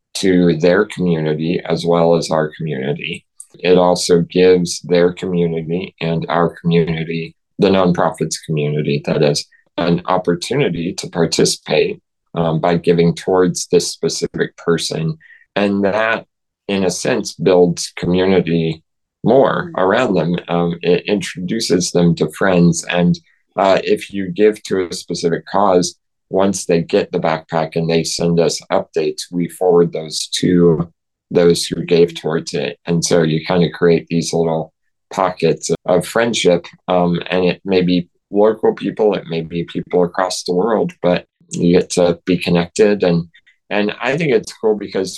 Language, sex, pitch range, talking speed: English, male, 85-95 Hz, 150 wpm